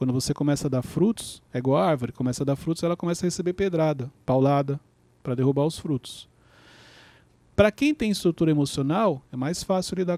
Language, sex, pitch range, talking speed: Portuguese, male, 145-195 Hz, 195 wpm